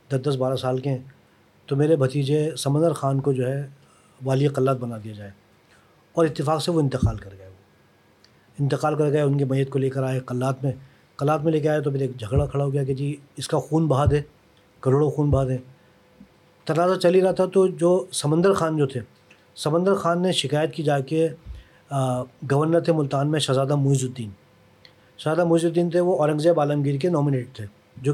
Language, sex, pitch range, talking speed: Urdu, male, 130-160 Hz, 205 wpm